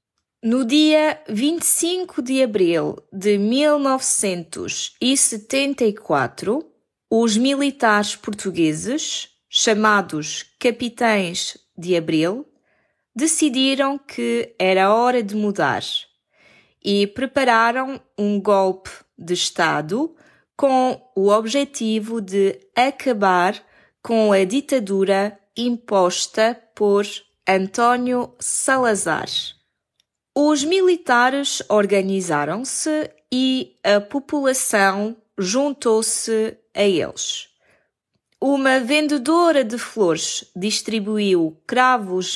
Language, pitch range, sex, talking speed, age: Portuguese, 195-265 Hz, female, 75 wpm, 20-39